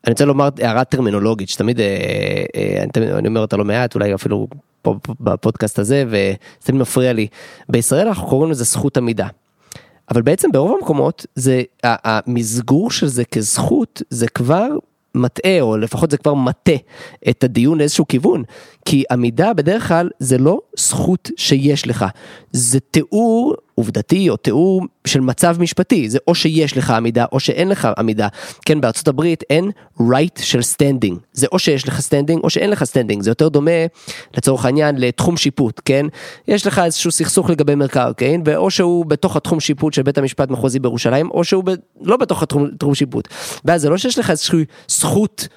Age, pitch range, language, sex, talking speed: 30-49, 125-165 Hz, Hebrew, male, 165 wpm